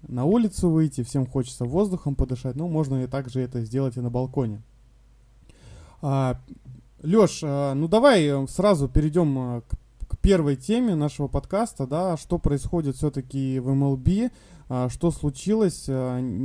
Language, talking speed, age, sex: Russian, 130 wpm, 20-39, male